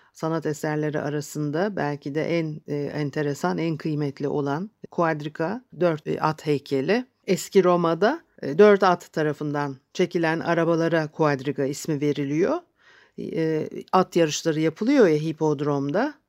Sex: female